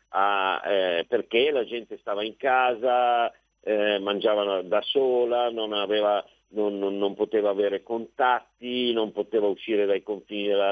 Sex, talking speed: male, 145 wpm